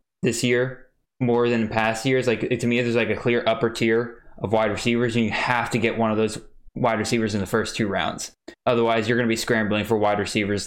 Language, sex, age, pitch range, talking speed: English, male, 10-29, 110-130 Hz, 240 wpm